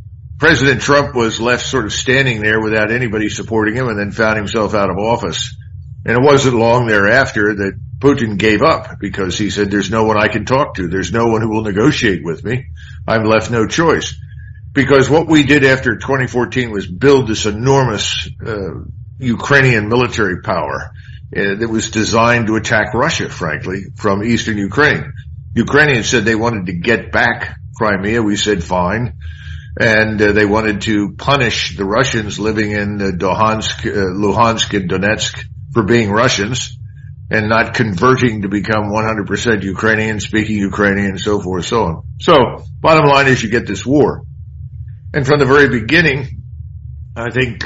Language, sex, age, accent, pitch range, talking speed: English, male, 50-69, American, 100-120 Hz, 170 wpm